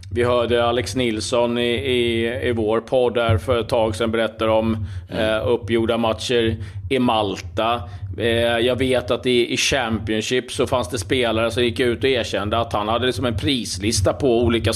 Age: 30-49